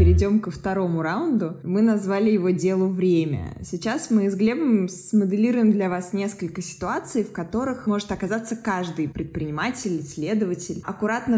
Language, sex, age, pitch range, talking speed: Russian, female, 20-39, 170-215 Hz, 135 wpm